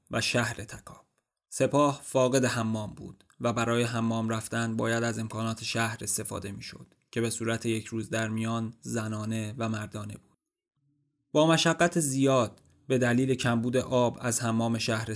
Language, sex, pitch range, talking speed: Persian, male, 110-125 Hz, 150 wpm